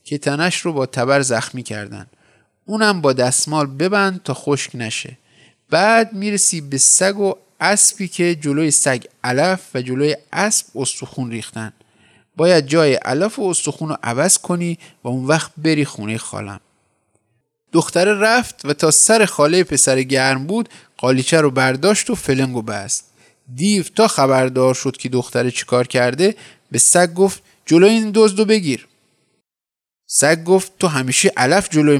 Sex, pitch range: male, 125-185 Hz